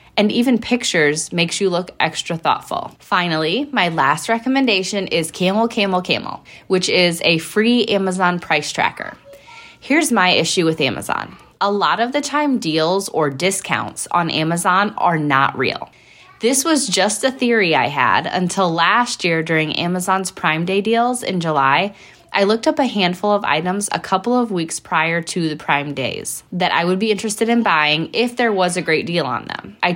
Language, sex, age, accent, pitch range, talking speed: English, female, 20-39, American, 165-220 Hz, 180 wpm